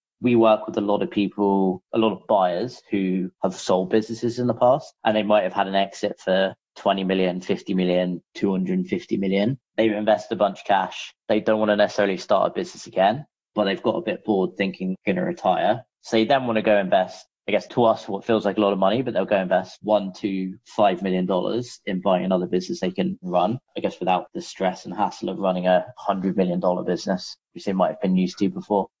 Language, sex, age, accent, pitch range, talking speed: English, male, 20-39, British, 95-115 Hz, 235 wpm